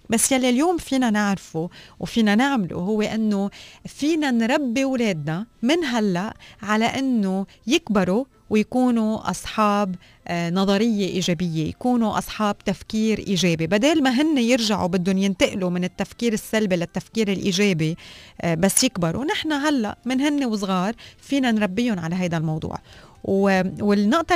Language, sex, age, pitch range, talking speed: Arabic, female, 30-49, 180-235 Hz, 120 wpm